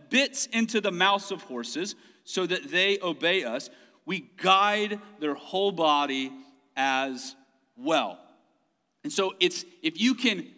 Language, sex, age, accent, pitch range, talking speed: English, male, 40-59, American, 145-235 Hz, 135 wpm